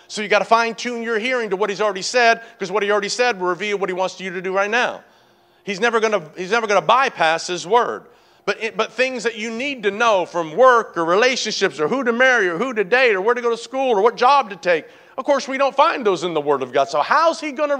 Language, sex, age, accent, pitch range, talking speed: English, male, 40-59, American, 200-255 Hz, 295 wpm